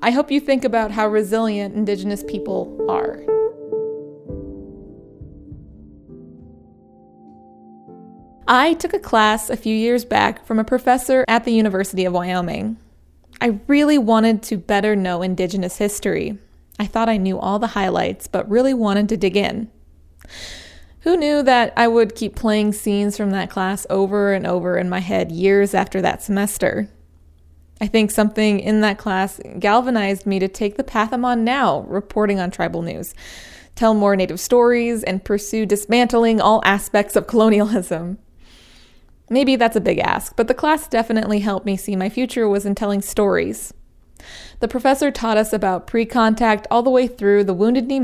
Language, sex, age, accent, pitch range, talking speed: English, female, 20-39, American, 190-230 Hz, 160 wpm